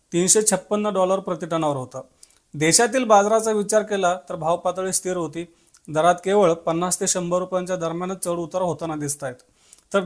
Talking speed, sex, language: 150 wpm, male, Marathi